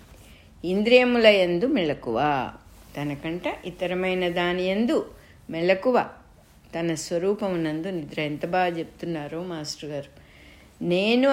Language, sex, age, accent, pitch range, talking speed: English, female, 60-79, Indian, 155-195 Hz, 85 wpm